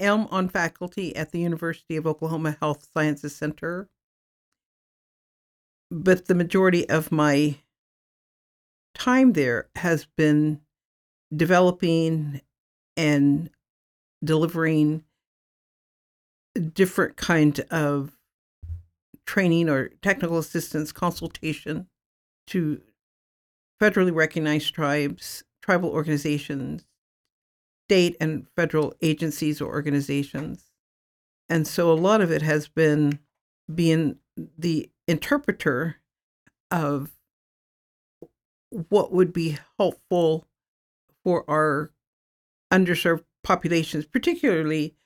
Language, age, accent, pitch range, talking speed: English, 50-69, American, 150-175 Hz, 90 wpm